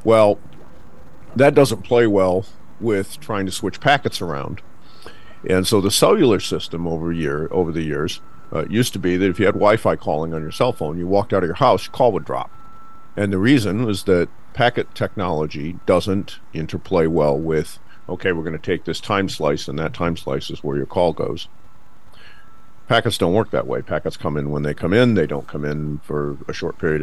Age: 50-69